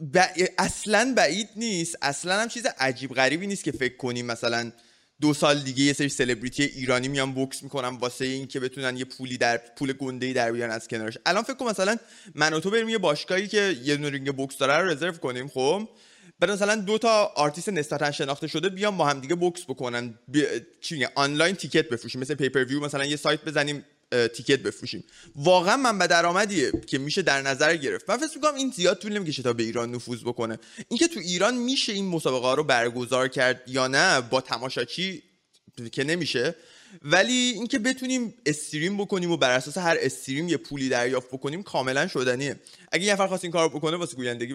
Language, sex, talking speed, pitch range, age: Persian, male, 195 wpm, 130-195 Hz, 20-39